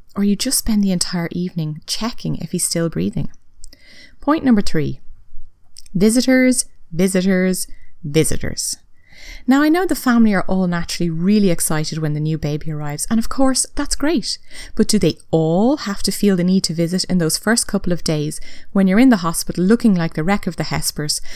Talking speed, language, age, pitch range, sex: 190 wpm, English, 30-49, 160-225 Hz, female